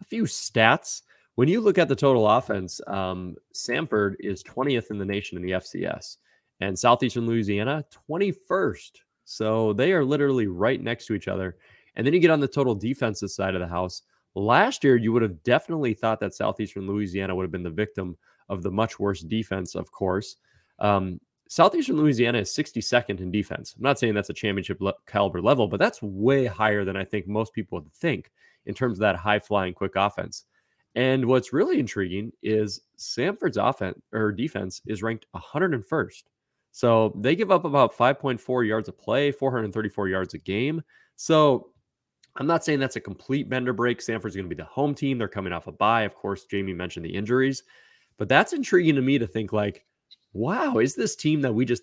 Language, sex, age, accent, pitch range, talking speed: English, male, 20-39, American, 100-130 Hz, 190 wpm